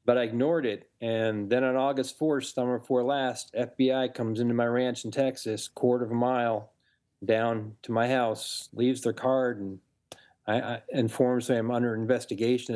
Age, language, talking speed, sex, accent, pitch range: 40-59, English, 170 wpm, male, American, 115-130 Hz